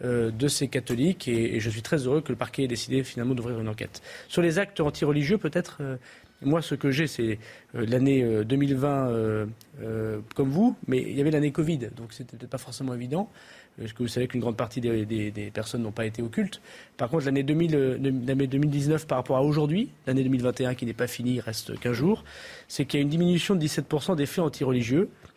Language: French